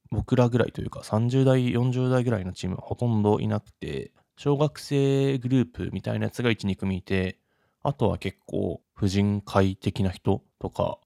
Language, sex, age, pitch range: Japanese, male, 20-39, 95-130 Hz